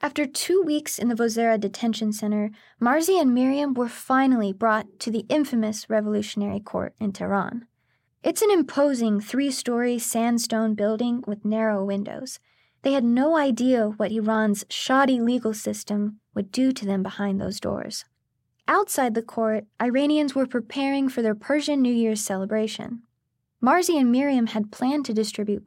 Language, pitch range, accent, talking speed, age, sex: English, 205-255 Hz, American, 150 wpm, 20-39, female